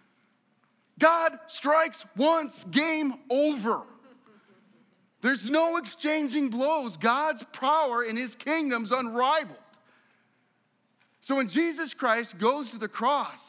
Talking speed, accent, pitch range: 100 wpm, American, 230-285 Hz